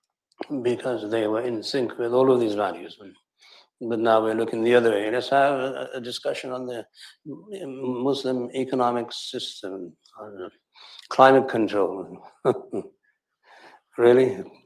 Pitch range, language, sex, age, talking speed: 110-135 Hz, English, male, 60-79, 120 wpm